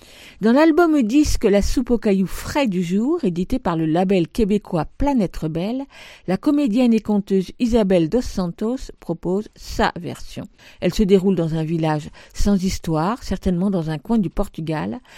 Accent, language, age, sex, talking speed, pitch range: French, French, 50-69, female, 170 wpm, 185-245 Hz